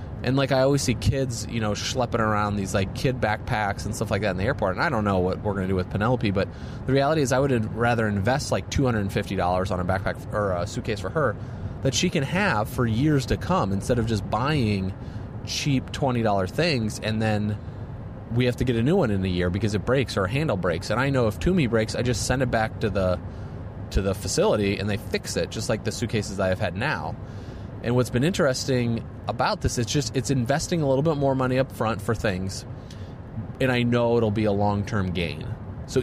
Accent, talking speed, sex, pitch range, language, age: American, 235 wpm, male, 105-125 Hz, English, 30-49